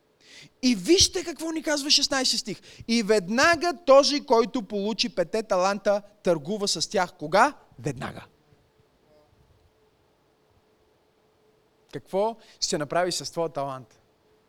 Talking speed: 105 wpm